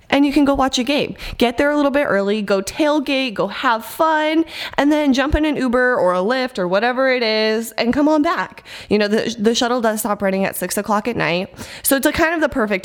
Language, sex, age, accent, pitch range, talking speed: English, female, 20-39, American, 195-250 Hz, 255 wpm